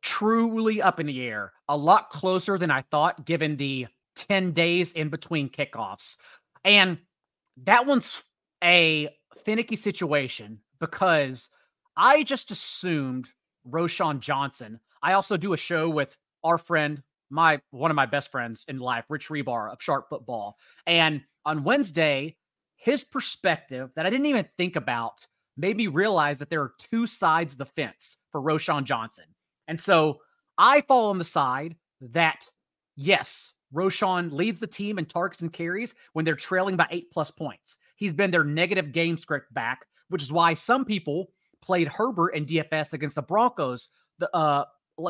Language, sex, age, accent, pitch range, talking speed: English, male, 30-49, American, 145-190 Hz, 160 wpm